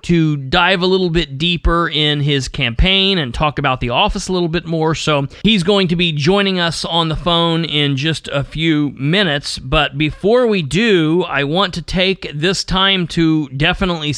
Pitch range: 140-175 Hz